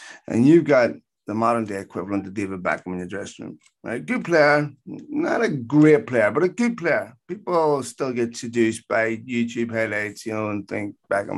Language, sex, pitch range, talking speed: English, male, 105-135 Hz, 195 wpm